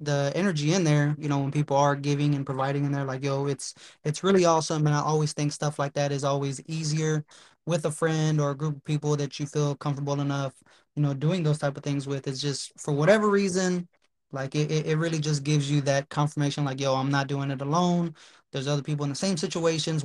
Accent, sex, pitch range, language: American, male, 140-155 Hz, English